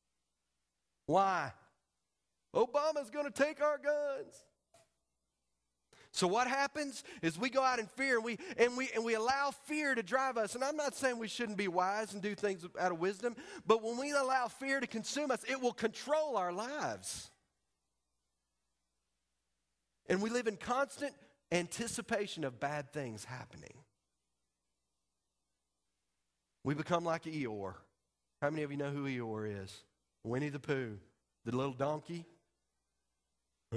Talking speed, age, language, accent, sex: 145 wpm, 40-59, English, American, male